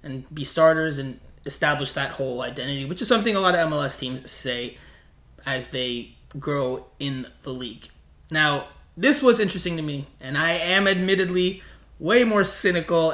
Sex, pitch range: male, 140-190 Hz